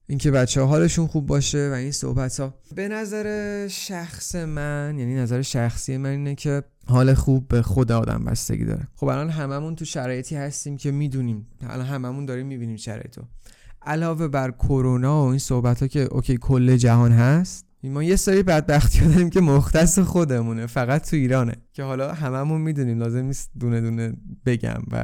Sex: male